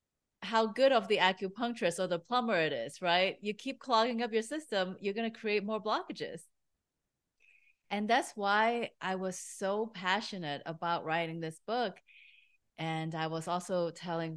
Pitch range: 165-220 Hz